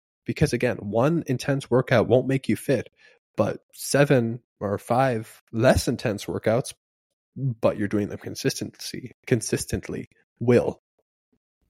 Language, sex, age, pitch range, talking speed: English, male, 20-39, 100-135 Hz, 120 wpm